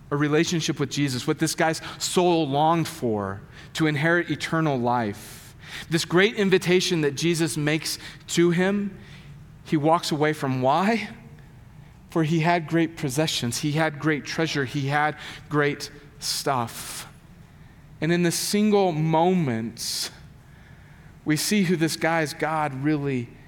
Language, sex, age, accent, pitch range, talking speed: English, male, 40-59, American, 150-175 Hz, 135 wpm